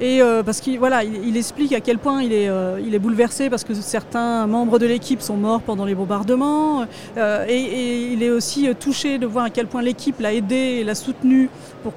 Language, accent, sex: French, French, female